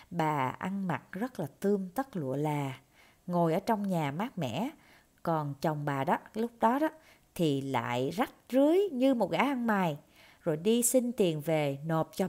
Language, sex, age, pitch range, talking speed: Vietnamese, female, 20-39, 150-215 Hz, 185 wpm